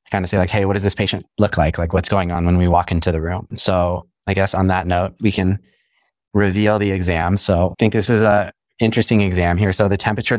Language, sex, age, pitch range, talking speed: English, male, 20-39, 95-110 Hz, 255 wpm